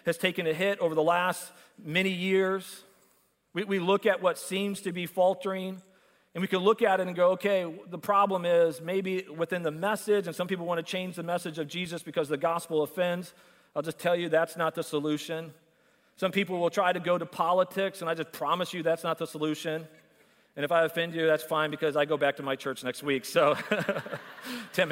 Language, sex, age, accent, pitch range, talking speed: English, male, 40-59, American, 155-185 Hz, 220 wpm